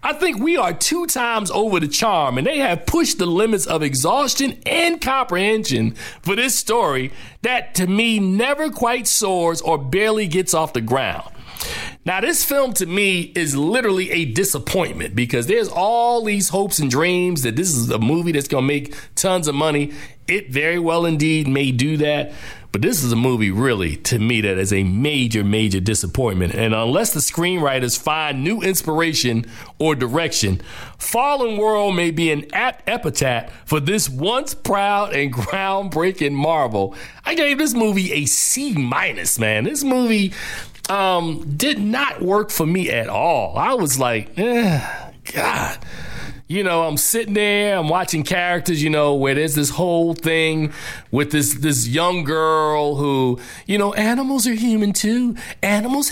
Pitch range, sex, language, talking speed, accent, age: 145-210 Hz, male, English, 165 wpm, American, 40-59